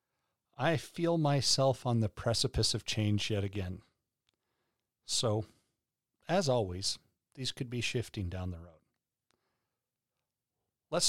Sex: male